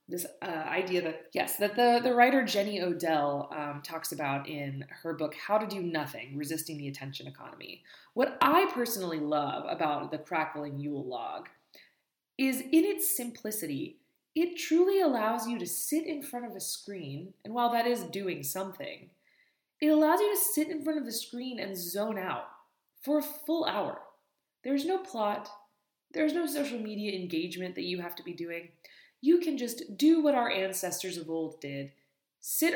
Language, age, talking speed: English, 20-39, 180 wpm